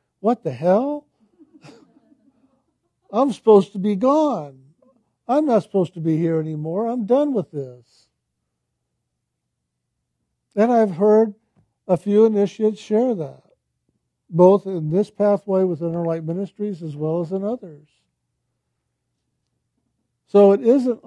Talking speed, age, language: 120 wpm, 60-79, English